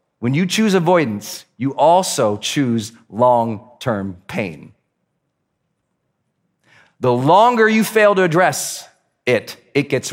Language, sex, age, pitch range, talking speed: English, male, 40-59, 130-180 Hz, 105 wpm